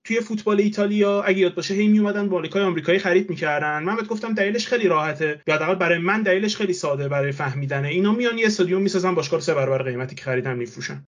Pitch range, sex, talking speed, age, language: 140-195 Hz, male, 200 wpm, 30-49, Persian